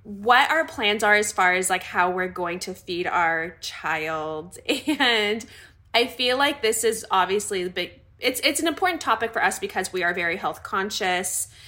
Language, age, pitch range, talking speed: English, 20-39, 180-250 Hz, 190 wpm